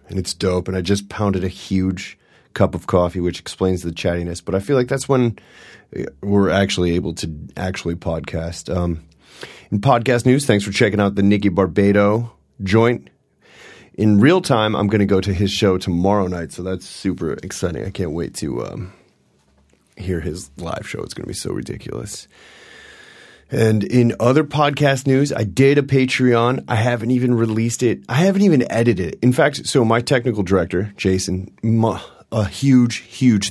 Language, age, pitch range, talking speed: English, 30-49, 90-115 Hz, 175 wpm